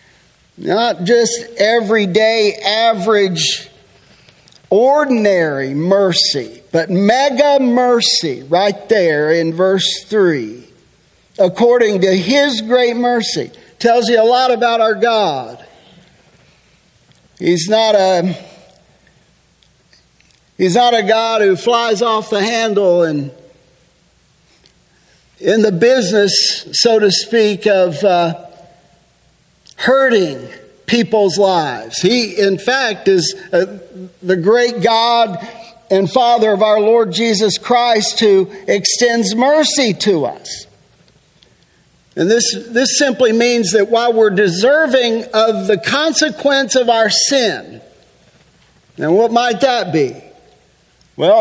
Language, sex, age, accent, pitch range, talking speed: English, male, 50-69, American, 190-235 Hz, 105 wpm